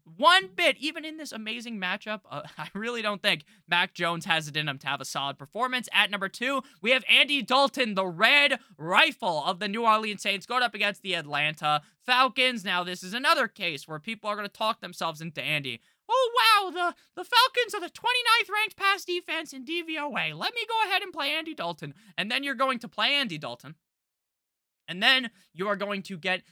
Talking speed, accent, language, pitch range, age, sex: 215 wpm, American, English, 170-250 Hz, 20-39, male